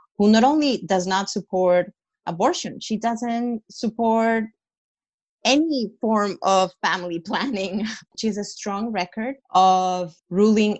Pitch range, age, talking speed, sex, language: 170-210 Hz, 30-49, 115 wpm, female, English